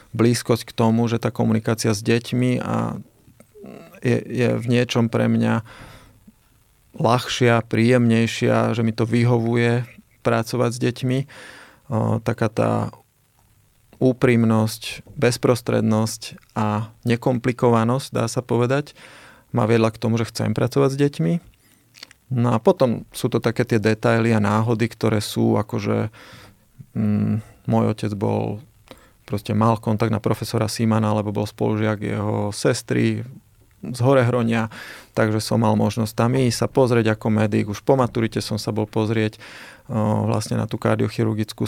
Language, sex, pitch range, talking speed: Slovak, male, 110-120 Hz, 135 wpm